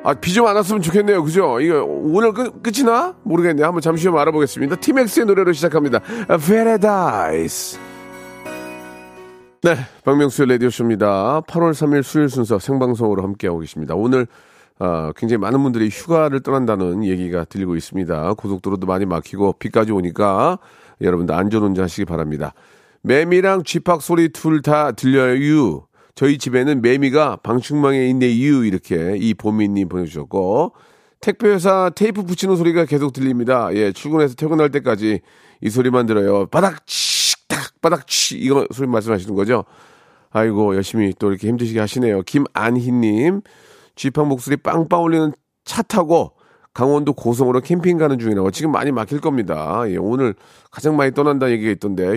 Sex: male